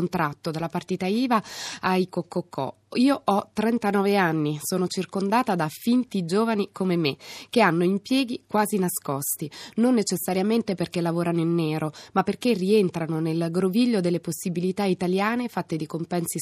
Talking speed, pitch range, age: 145 wpm, 170-205 Hz, 20-39